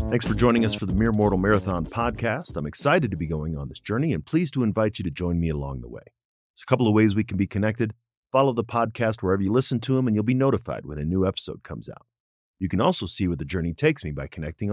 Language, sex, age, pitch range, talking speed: English, male, 40-59, 90-120 Hz, 275 wpm